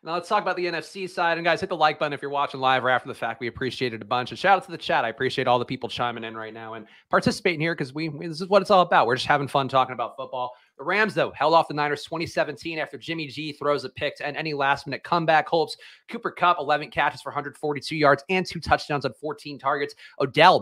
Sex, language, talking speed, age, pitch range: male, English, 275 wpm, 30-49, 135-170 Hz